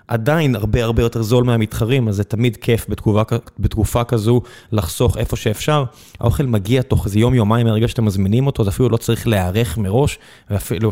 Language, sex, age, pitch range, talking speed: Hebrew, male, 20-39, 110-130 Hz, 175 wpm